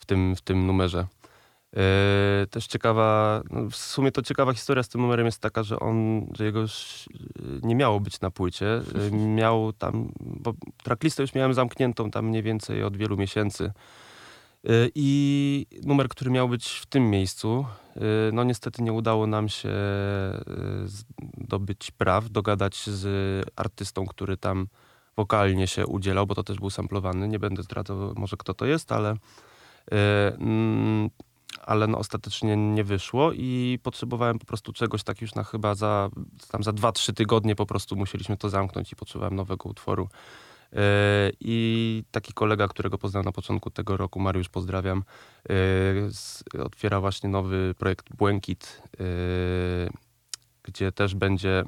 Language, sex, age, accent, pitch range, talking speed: Polish, male, 20-39, native, 95-115 Hz, 150 wpm